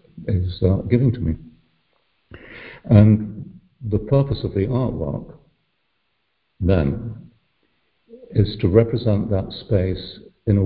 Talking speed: 105 wpm